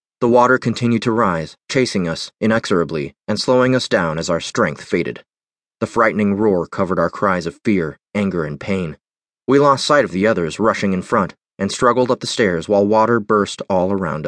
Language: English